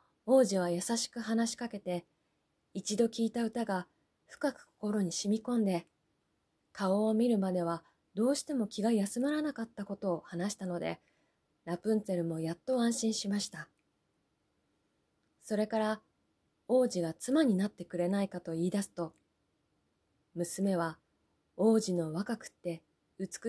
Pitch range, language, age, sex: 190-255 Hz, Japanese, 20-39, female